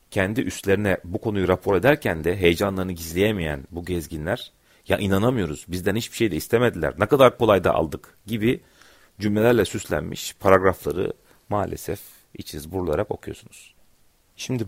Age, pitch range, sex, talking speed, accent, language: 40-59, 85-110 Hz, male, 130 wpm, native, Turkish